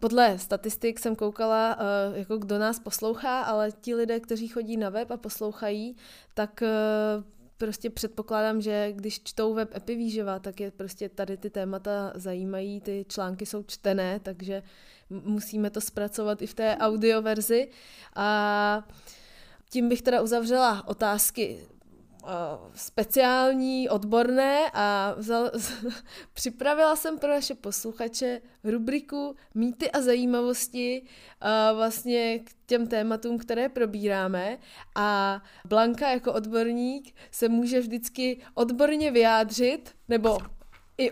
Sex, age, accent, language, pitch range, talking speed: female, 20-39, native, Czech, 210-245 Hz, 115 wpm